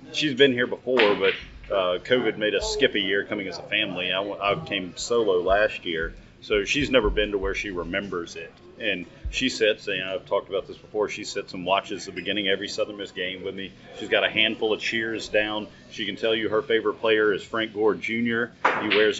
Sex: male